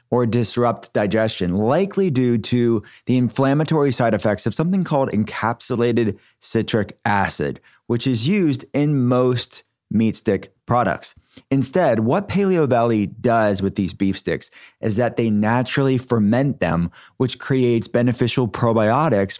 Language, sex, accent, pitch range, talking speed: English, male, American, 105-125 Hz, 135 wpm